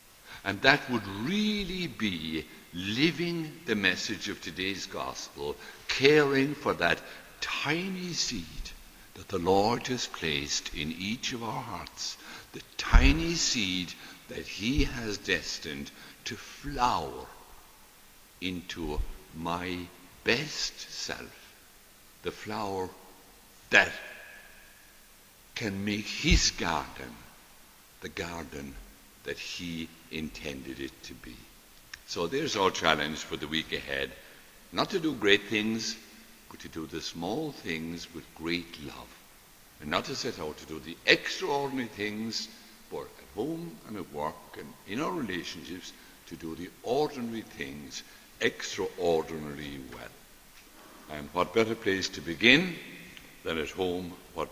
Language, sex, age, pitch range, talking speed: English, male, 60-79, 80-120 Hz, 125 wpm